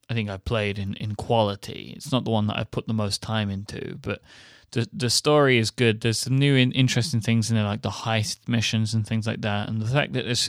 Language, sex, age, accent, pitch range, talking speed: English, male, 20-39, British, 105-125 Hz, 255 wpm